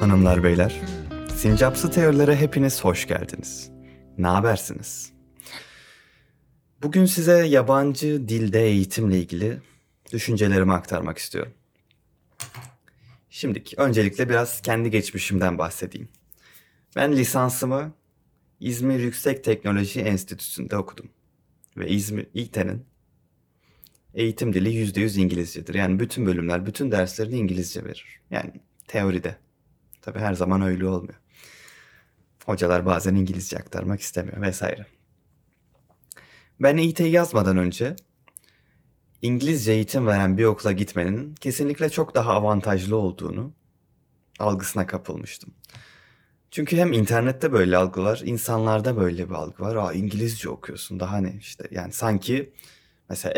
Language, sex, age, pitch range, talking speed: Turkish, male, 30-49, 90-125 Hz, 105 wpm